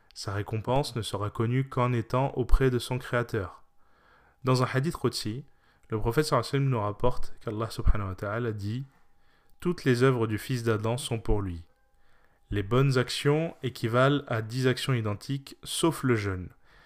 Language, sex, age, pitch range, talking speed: French, male, 20-39, 105-130 Hz, 165 wpm